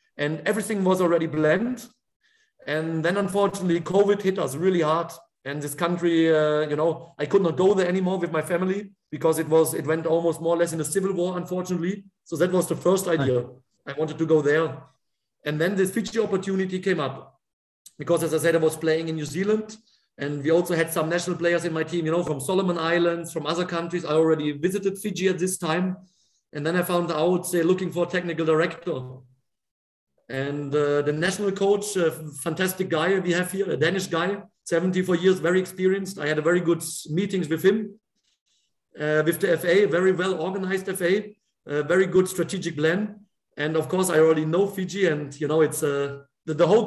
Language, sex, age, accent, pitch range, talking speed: English, male, 40-59, German, 160-190 Hz, 205 wpm